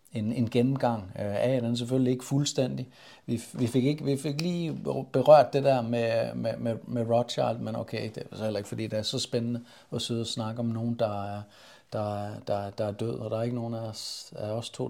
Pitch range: 115-135 Hz